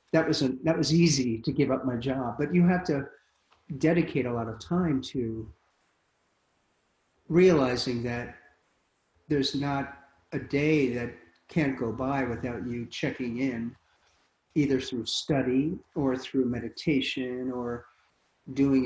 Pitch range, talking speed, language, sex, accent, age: 120-150 Hz, 135 wpm, English, male, American, 40-59